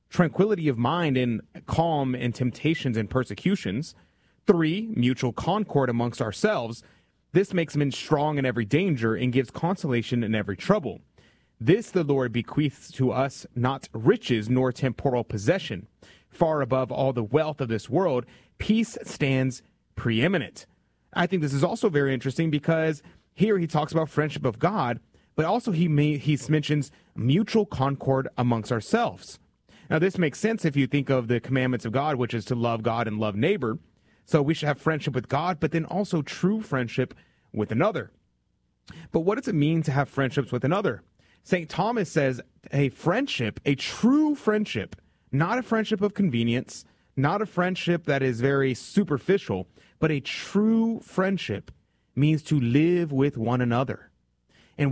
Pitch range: 125-170 Hz